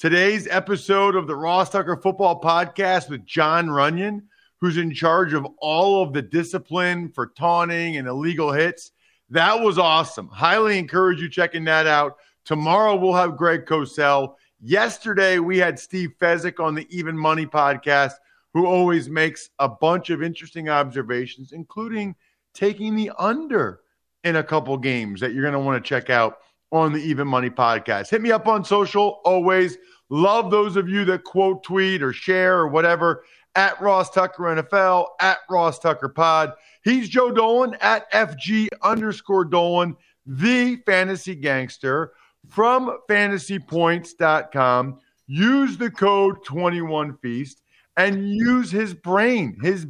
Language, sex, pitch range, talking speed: English, male, 155-200 Hz, 150 wpm